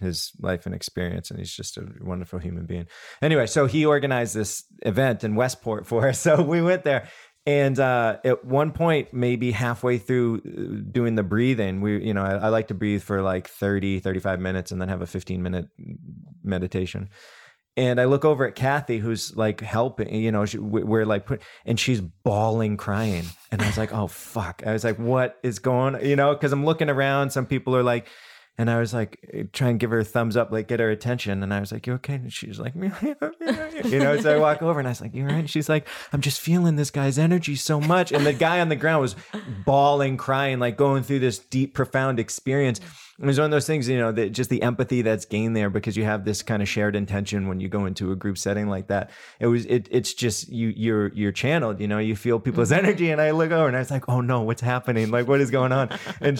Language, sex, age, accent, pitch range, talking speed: English, male, 20-39, American, 105-140 Hz, 240 wpm